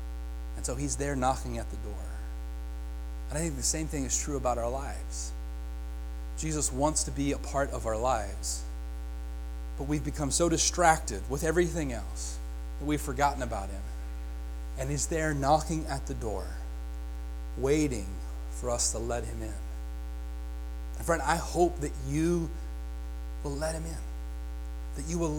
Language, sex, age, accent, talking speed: English, male, 30-49, American, 160 wpm